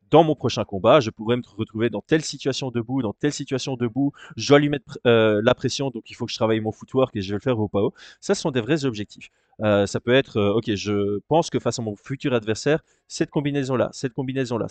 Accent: French